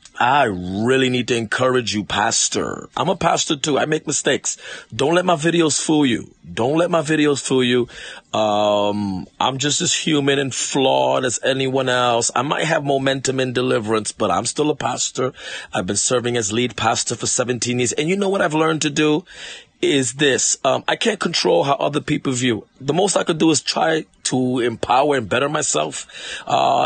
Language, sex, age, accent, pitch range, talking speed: English, male, 30-49, American, 120-150 Hz, 195 wpm